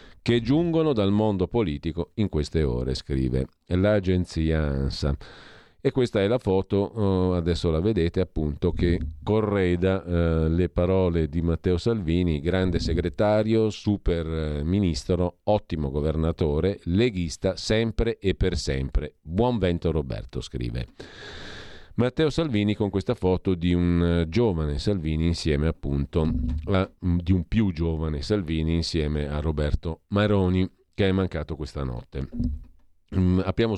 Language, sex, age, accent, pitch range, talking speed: Italian, male, 40-59, native, 80-100 Hz, 120 wpm